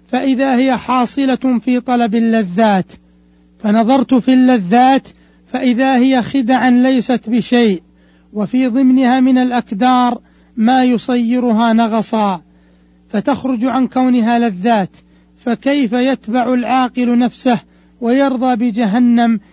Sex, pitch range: male, 225-255 Hz